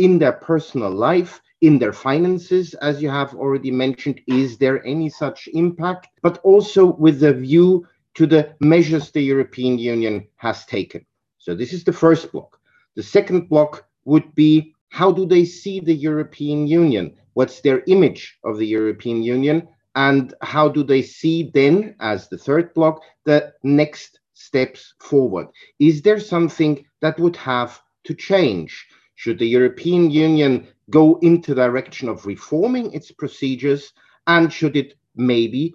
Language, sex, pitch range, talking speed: Polish, male, 130-170 Hz, 155 wpm